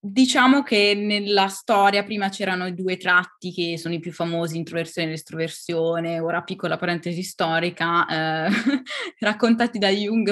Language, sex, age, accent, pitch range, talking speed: Italian, female, 20-39, native, 165-195 Hz, 145 wpm